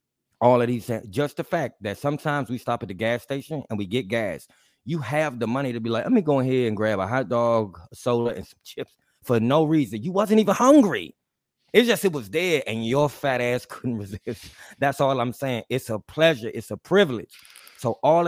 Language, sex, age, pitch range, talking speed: English, male, 20-39, 110-140 Hz, 225 wpm